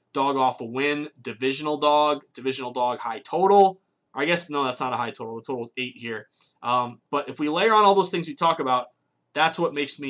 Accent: American